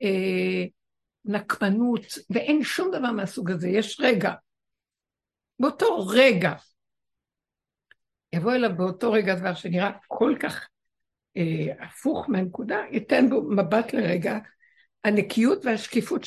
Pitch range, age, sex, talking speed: 185-255 Hz, 60-79, female, 105 wpm